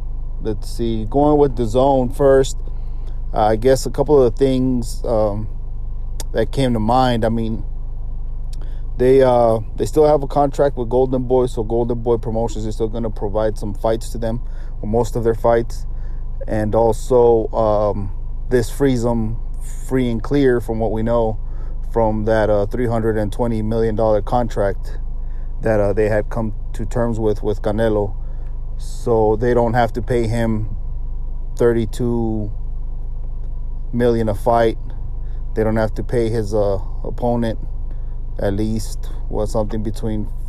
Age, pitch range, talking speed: 30-49, 110-120 Hz, 155 wpm